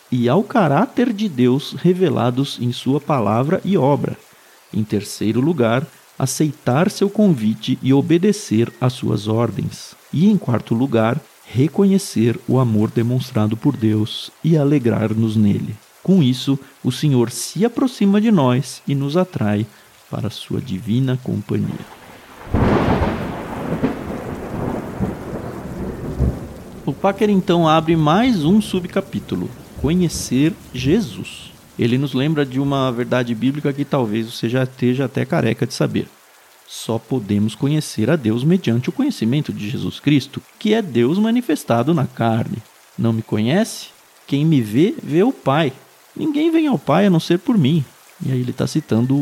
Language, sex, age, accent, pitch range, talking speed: Portuguese, male, 50-69, Brazilian, 120-195 Hz, 140 wpm